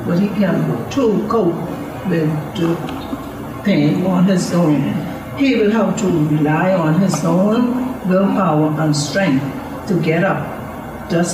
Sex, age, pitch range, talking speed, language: female, 60-79, 155-205 Hz, 140 wpm, English